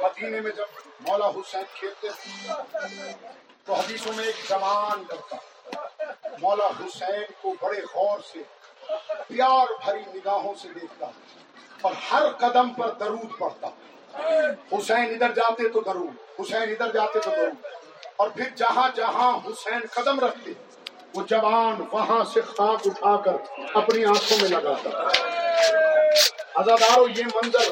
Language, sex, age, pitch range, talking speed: Urdu, male, 50-69, 210-305 Hz, 130 wpm